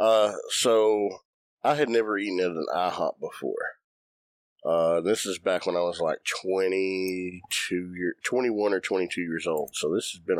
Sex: male